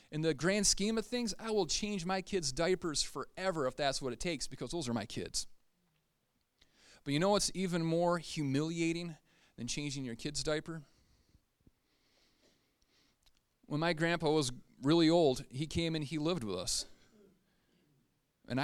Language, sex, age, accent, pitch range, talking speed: English, male, 30-49, American, 135-170 Hz, 160 wpm